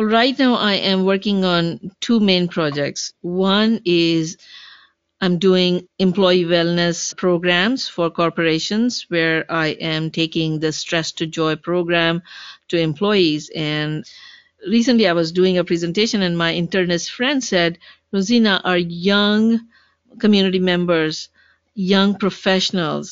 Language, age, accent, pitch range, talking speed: English, 50-69, Indian, 165-200 Hz, 125 wpm